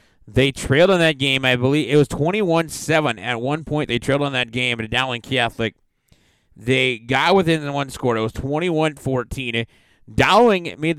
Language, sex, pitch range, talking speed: English, male, 120-160 Hz, 170 wpm